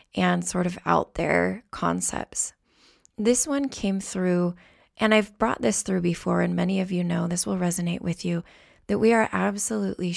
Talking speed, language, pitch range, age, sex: 175 wpm, English, 175-210 Hz, 20-39, female